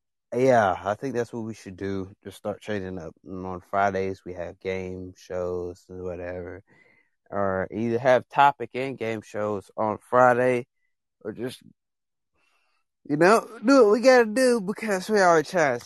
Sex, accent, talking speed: male, American, 165 wpm